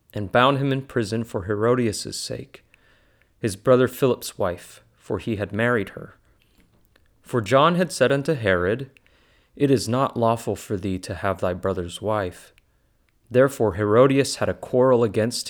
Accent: American